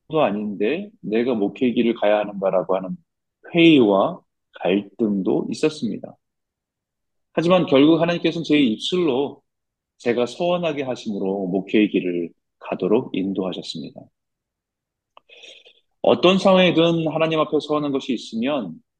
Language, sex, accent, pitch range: Korean, male, native, 105-155 Hz